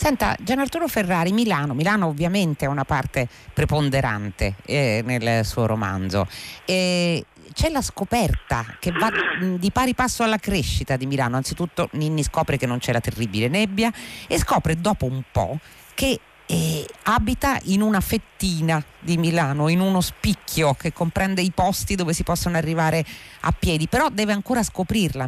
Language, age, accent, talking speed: Italian, 40-59, native, 160 wpm